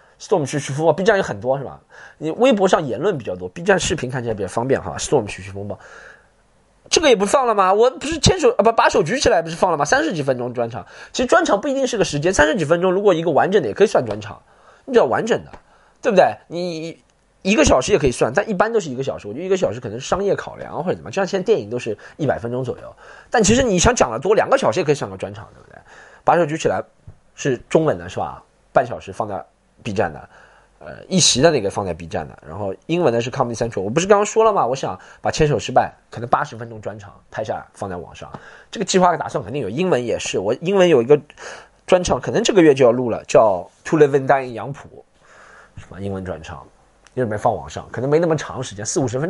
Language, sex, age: Chinese, male, 20-39